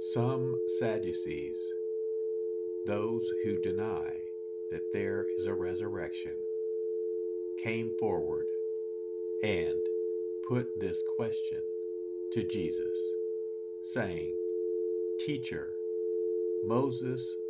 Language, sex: English, male